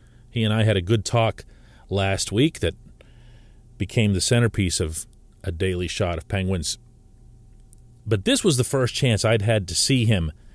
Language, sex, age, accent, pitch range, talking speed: English, male, 40-59, American, 105-130 Hz, 170 wpm